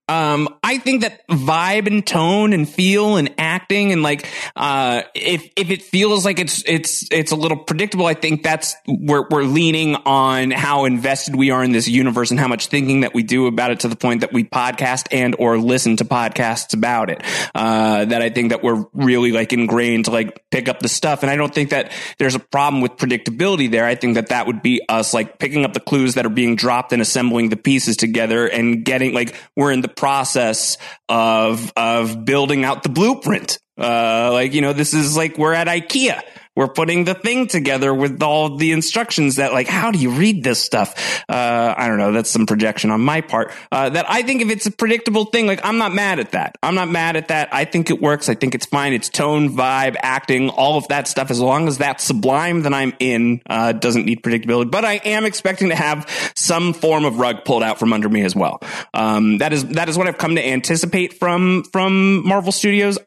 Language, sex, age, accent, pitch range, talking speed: English, male, 20-39, American, 120-165 Hz, 225 wpm